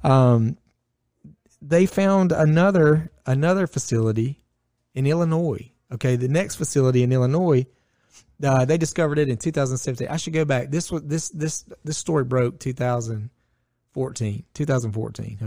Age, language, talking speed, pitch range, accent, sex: 30-49, English, 130 wpm, 115-155 Hz, American, male